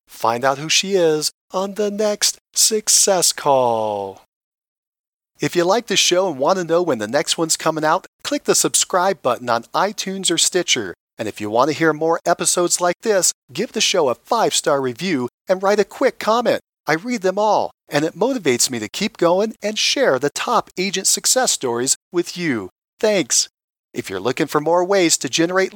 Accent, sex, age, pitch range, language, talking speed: American, male, 40-59, 155-210 Hz, English, 195 wpm